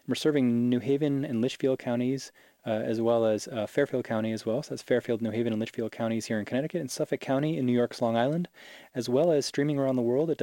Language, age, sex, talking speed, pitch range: English, 20-39, male, 245 wpm, 105-125 Hz